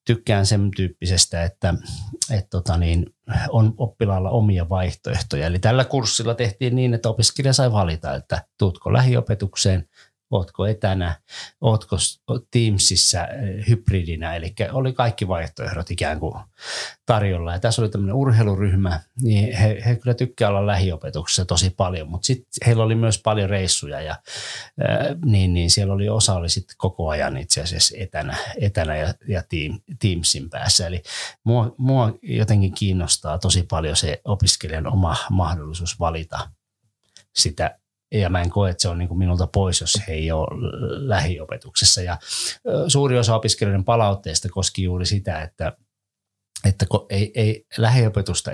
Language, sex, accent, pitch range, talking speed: Finnish, male, native, 90-115 Hz, 140 wpm